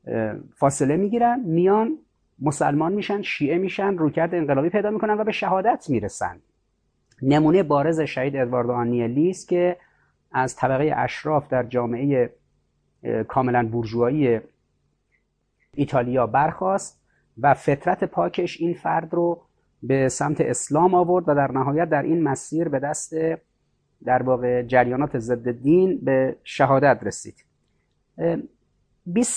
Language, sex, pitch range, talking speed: Persian, male, 125-160 Hz, 115 wpm